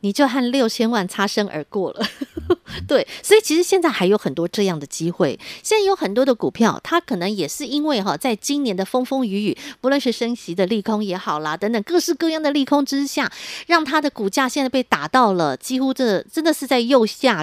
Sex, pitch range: female, 195-275 Hz